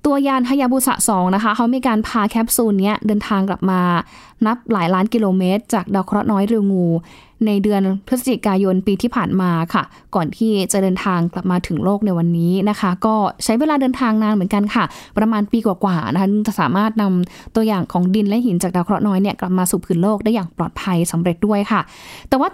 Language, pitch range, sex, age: Thai, 195-235 Hz, female, 20-39